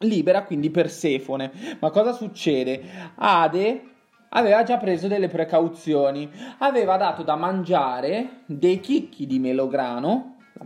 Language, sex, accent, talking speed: Italian, male, native, 120 wpm